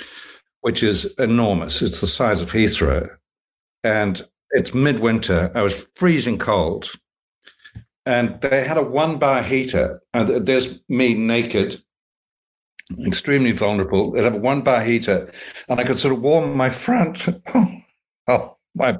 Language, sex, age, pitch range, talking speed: English, male, 60-79, 115-150 Hz, 140 wpm